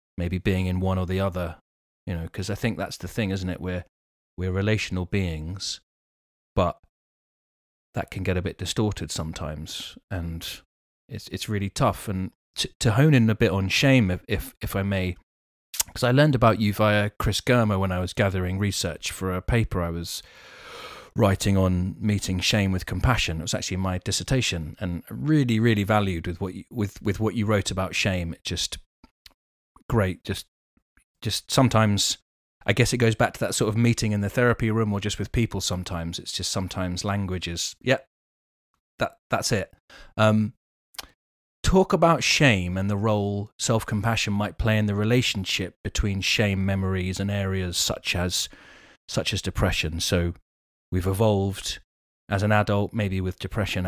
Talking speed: 175 wpm